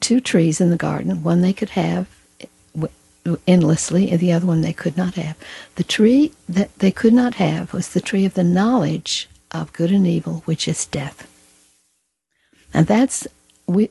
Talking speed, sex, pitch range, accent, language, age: 175 wpm, female, 155-190 Hz, American, English, 60-79